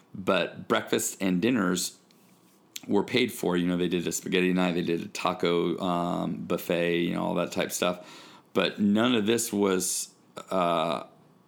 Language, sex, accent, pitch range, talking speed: English, male, American, 85-95 Hz, 170 wpm